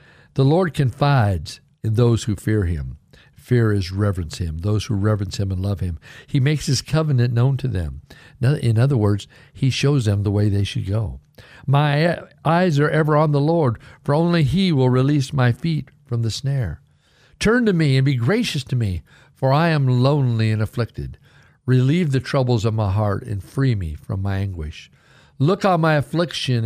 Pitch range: 115-160 Hz